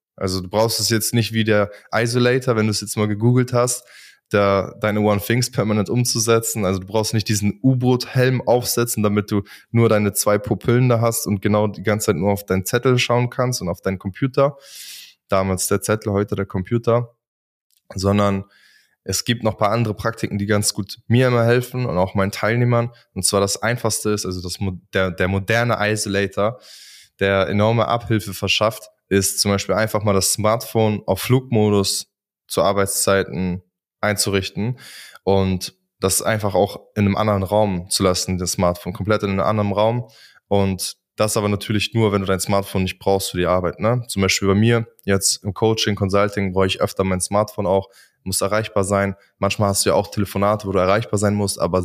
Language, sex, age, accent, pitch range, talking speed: German, male, 20-39, German, 95-110 Hz, 185 wpm